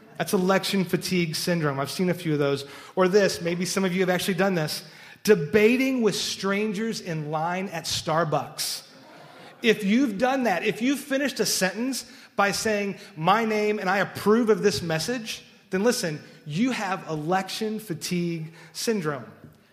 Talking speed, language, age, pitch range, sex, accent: 160 wpm, English, 30-49, 165-220 Hz, male, American